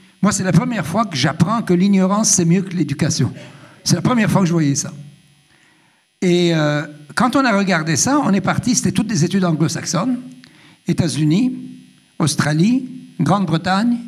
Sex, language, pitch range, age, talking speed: male, French, 160-220 Hz, 60-79, 165 wpm